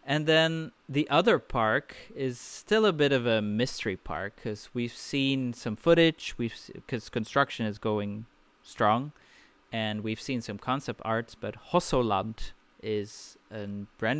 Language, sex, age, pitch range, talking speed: English, male, 30-49, 105-135 Hz, 150 wpm